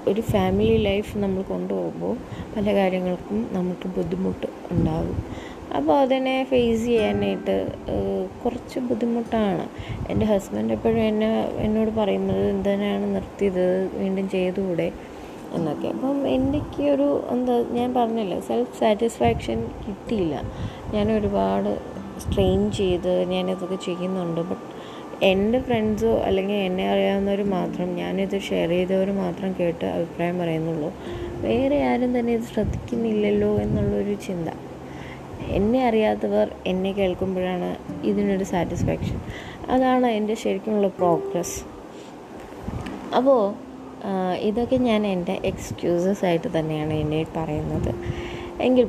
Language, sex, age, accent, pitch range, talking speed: Malayalam, female, 20-39, native, 170-220 Hz, 100 wpm